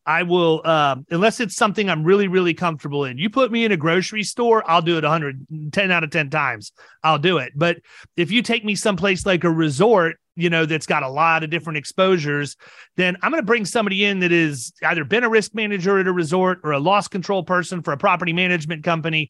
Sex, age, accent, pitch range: male, 30-49, American, 165-205 Hz